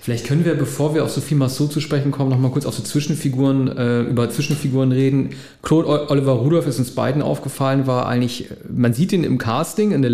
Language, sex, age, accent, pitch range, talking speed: German, male, 40-59, German, 130-155 Hz, 225 wpm